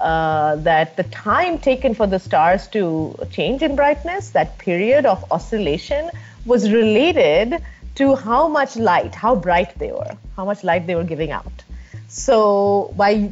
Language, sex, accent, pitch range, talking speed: Swedish, female, Indian, 185-280 Hz, 160 wpm